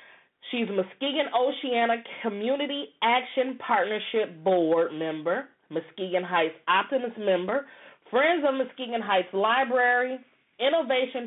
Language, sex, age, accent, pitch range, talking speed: English, female, 30-49, American, 175-245 Hz, 95 wpm